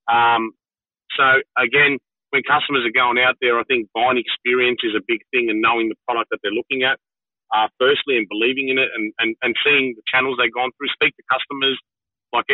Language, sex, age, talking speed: English, male, 30-49, 210 wpm